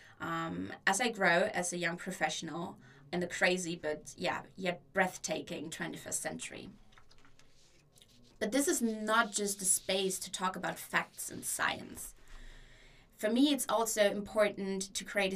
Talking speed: 145 wpm